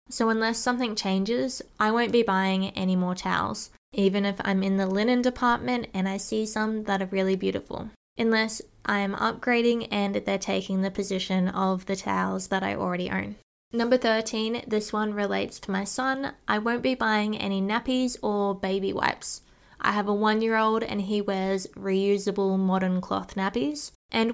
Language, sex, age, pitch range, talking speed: English, female, 10-29, 195-225 Hz, 175 wpm